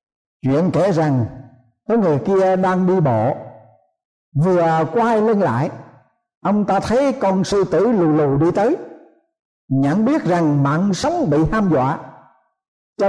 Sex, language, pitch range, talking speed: male, Vietnamese, 155-215 Hz, 145 wpm